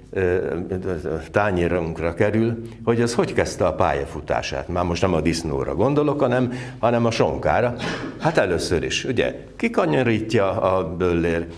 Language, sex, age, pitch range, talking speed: Hungarian, male, 60-79, 85-135 Hz, 130 wpm